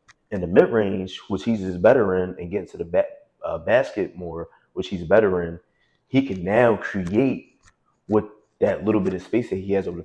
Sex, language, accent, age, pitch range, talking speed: male, English, American, 20-39, 90-115 Hz, 215 wpm